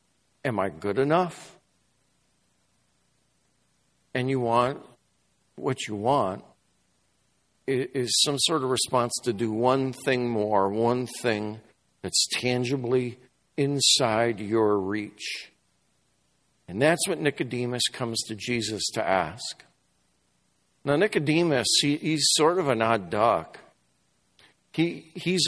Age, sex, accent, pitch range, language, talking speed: 60-79, male, American, 110-155 Hz, English, 105 wpm